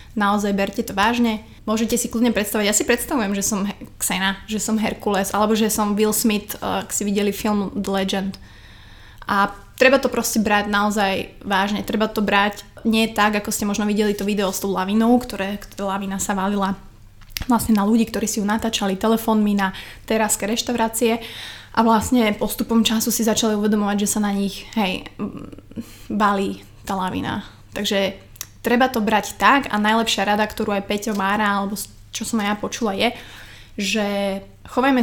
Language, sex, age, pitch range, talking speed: Slovak, female, 20-39, 200-225 Hz, 170 wpm